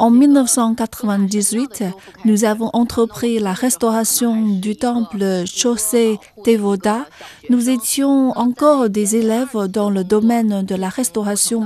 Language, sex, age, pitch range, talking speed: French, female, 40-59, 200-240 Hz, 115 wpm